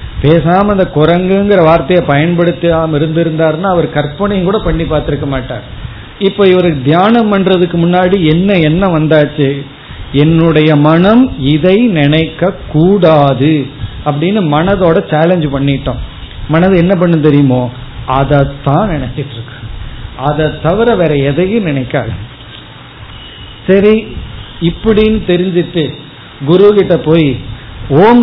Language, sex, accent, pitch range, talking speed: Tamil, male, native, 140-185 Hz, 100 wpm